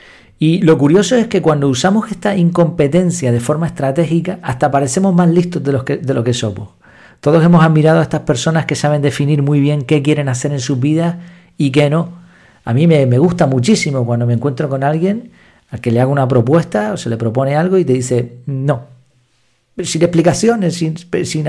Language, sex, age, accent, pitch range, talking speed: Spanish, male, 50-69, Argentinian, 130-175 Hz, 200 wpm